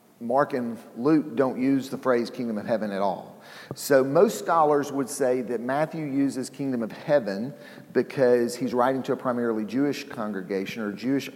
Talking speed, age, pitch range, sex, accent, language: 175 wpm, 40-59, 120-155 Hz, male, American, English